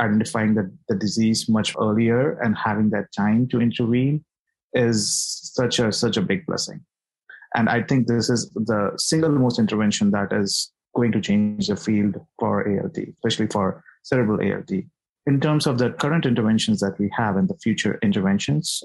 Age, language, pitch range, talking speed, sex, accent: 30-49, English, 105-125 Hz, 170 wpm, male, Indian